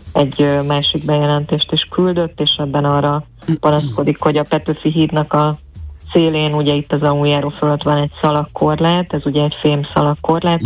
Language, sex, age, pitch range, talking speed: Hungarian, female, 30-49, 145-155 Hz, 160 wpm